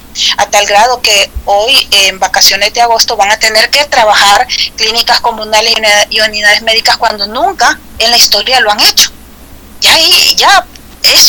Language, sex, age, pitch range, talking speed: Spanish, female, 30-49, 200-245 Hz, 165 wpm